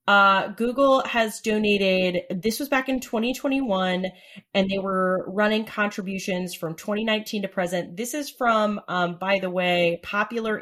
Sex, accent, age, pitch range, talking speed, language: female, American, 30-49, 175-225 Hz, 145 wpm, English